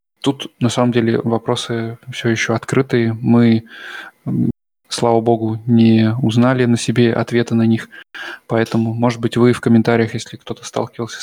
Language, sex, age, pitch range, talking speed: Russian, male, 20-39, 115-120 Hz, 145 wpm